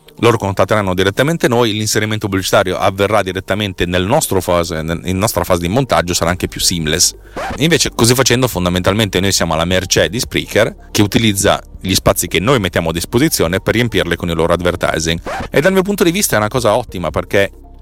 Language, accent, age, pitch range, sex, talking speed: Italian, native, 30-49, 90-115 Hz, male, 190 wpm